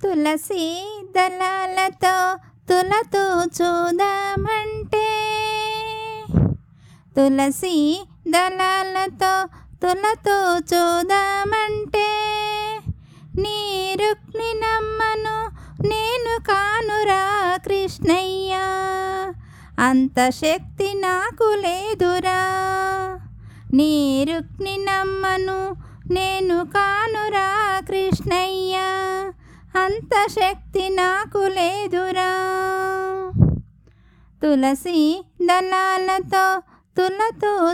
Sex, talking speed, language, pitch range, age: female, 45 wpm, Telugu, 360-420 Hz, 20-39